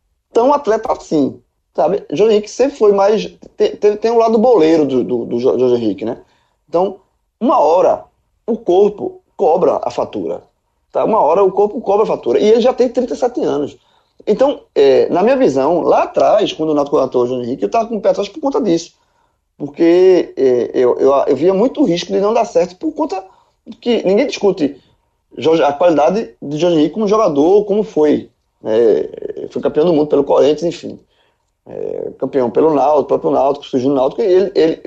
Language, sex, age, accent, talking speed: Portuguese, male, 20-39, Brazilian, 185 wpm